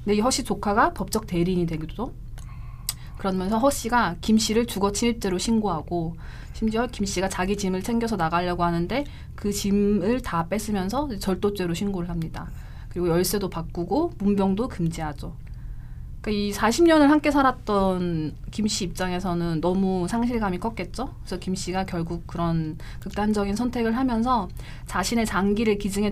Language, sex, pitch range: Korean, female, 170-225 Hz